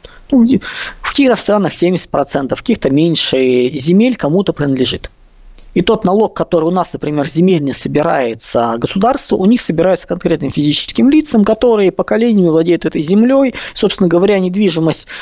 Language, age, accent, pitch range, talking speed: Russian, 20-39, native, 150-195 Hz, 140 wpm